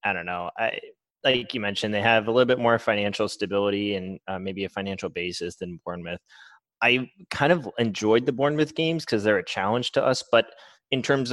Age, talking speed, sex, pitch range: 20-39, 205 wpm, male, 95-125 Hz